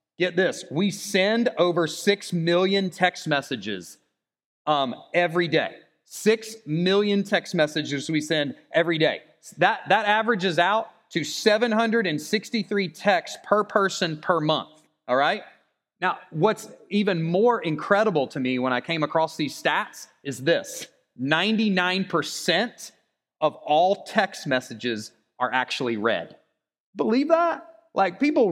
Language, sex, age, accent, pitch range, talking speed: English, male, 30-49, American, 155-210 Hz, 125 wpm